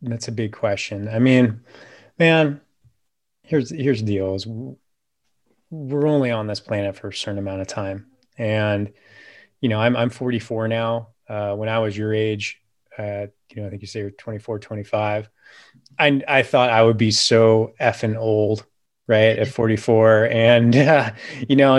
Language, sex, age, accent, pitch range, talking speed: English, male, 30-49, American, 105-120 Hz, 170 wpm